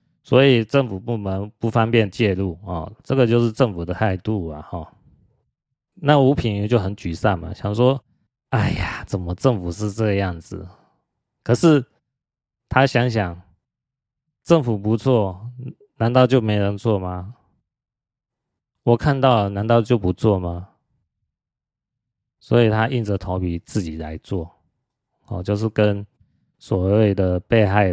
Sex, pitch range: male, 95-120 Hz